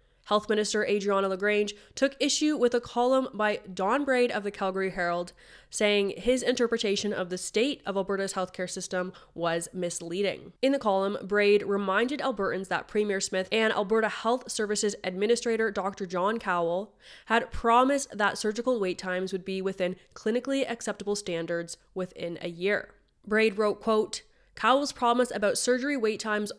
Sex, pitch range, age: female, 190-230 Hz, 20-39